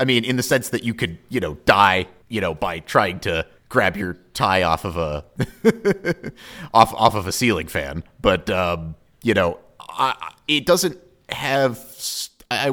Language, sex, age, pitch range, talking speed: English, male, 30-49, 100-150 Hz, 175 wpm